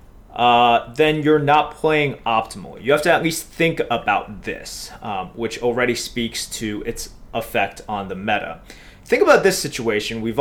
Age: 30-49